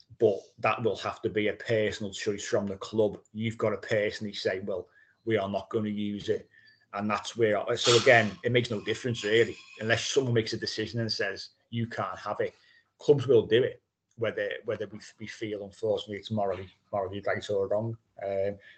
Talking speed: 200 wpm